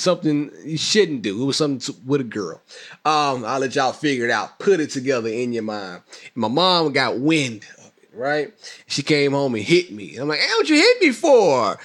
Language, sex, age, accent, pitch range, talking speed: English, male, 20-39, American, 135-185 Hz, 235 wpm